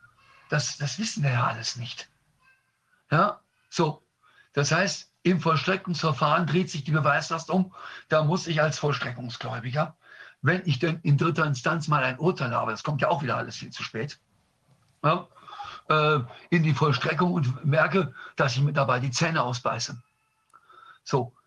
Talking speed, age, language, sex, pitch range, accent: 160 wpm, 50-69, German, male, 140-155 Hz, German